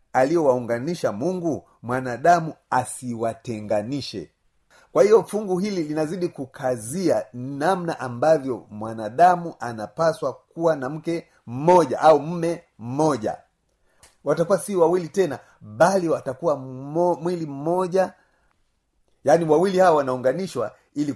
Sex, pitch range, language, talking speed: male, 120-175 Hz, Swahili, 95 wpm